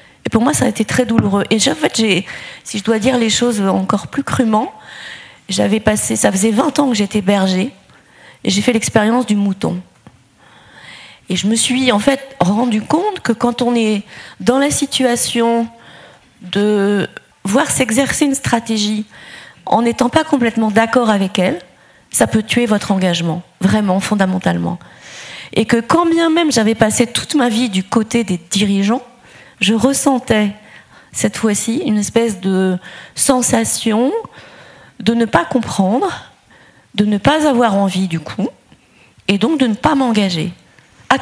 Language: French